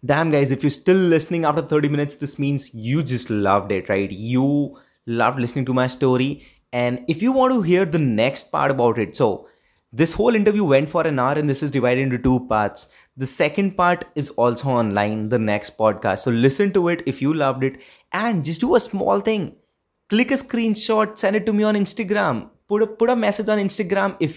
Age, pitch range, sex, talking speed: 20-39, 125-190 Hz, male, 215 wpm